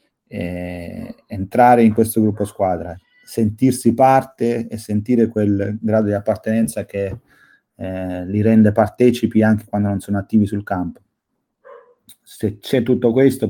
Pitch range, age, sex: 100-115 Hz, 30-49, male